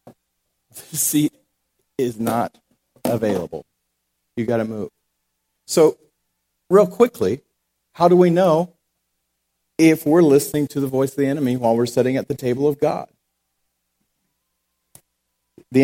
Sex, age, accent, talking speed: male, 40-59, American, 130 wpm